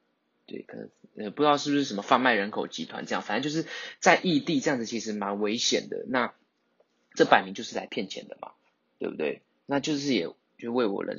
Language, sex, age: Chinese, male, 20-39